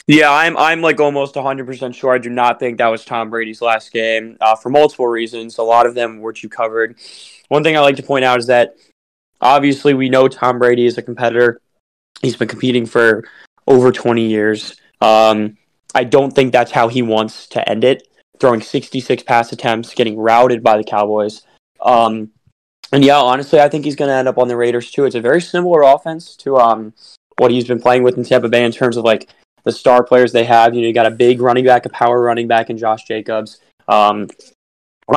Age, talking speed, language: 10-29, 220 wpm, English